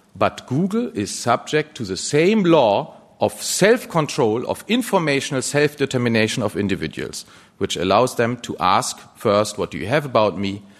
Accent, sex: German, male